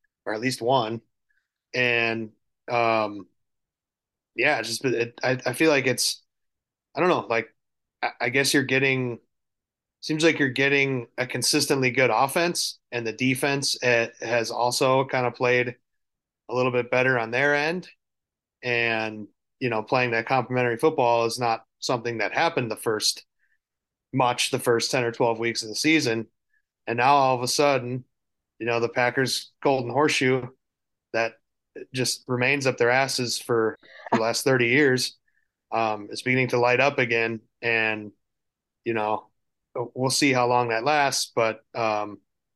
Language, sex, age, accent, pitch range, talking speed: English, male, 30-49, American, 115-135 Hz, 160 wpm